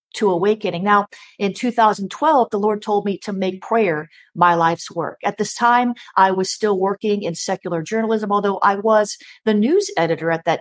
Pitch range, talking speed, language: 180-225 Hz, 185 wpm, English